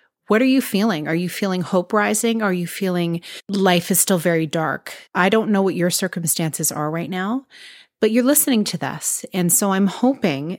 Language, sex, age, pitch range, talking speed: English, female, 30-49, 160-215 Hz, 200 wpm